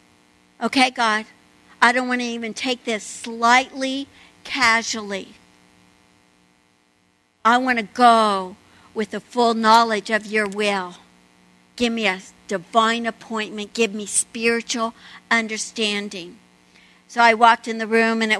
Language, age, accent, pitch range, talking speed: English, 60-79, American, 205-265 Hz, 125 wpm